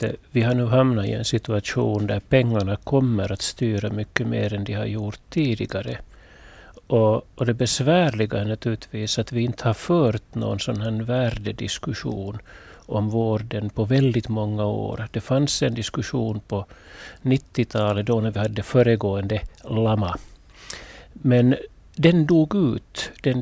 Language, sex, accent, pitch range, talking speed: Finnish, male, native, 105-135 Hz, 145 wpm